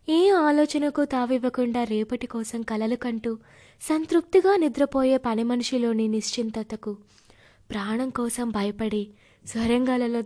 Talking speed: 95 wpm